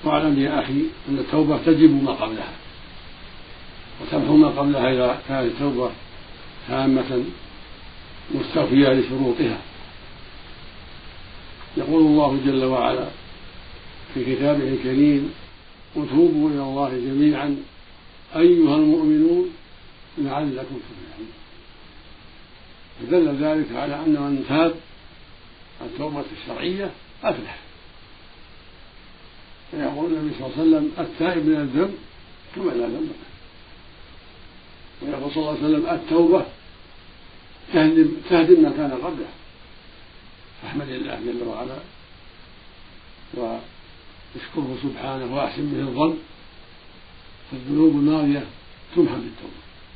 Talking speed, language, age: 95 wpm, Arabic, 60-79